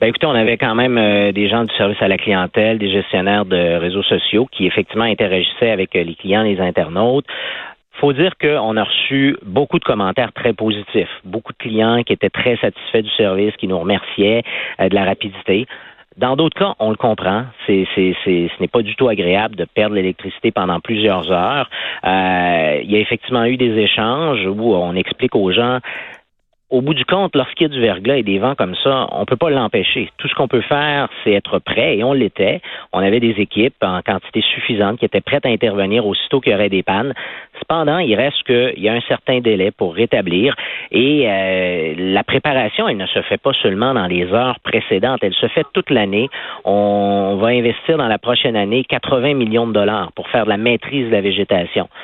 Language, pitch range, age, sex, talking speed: French, 100-125 Hz, 40-59, male, 210 wpm